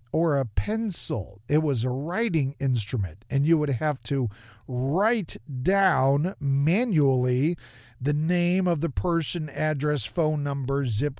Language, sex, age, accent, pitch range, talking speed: English, male, 40-59, American, 125-175 Hz, 135 wpm